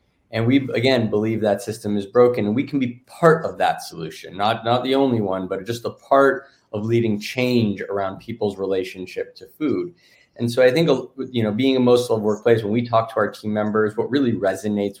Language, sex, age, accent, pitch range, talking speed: English, male, 20-39, American, 100-125 Hz, 210 wpm